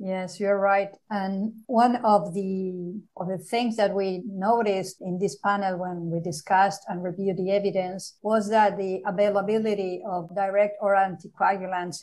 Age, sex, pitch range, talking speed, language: 50-69, female, 180-205 Hz, 155 wpm, English